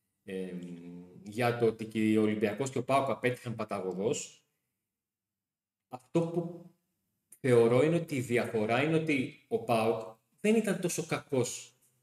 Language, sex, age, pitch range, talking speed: Greek, male, 30-49, 115-150 Hz, 130 wpm